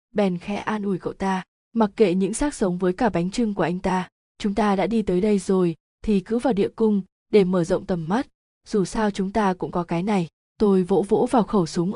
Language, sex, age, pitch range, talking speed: Vietnamese, female, 20-39, 185-230 Hz, 245 wpm